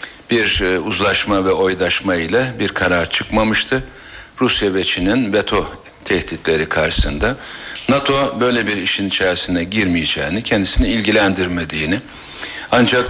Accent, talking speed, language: native, 105 wpm, Turkish